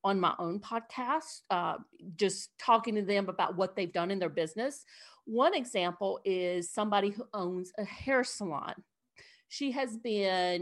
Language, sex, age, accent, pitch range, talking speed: English, female, 50-69, American, 185-230 Hz, 160 wpm